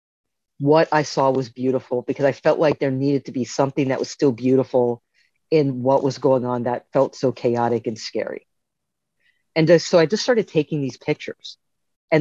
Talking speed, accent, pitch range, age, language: 185 wpm, American, 130-170 Hz, 40-59, English